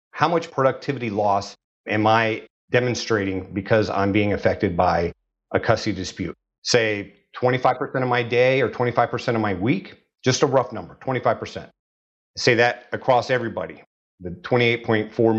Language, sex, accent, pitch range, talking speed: English, male, American, 105-130 Hz, 140 wpm